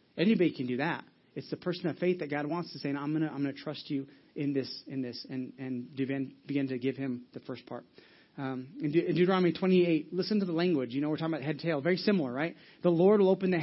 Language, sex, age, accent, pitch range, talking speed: English, male, 30-49, American, 145-180 Hz, 275 wpm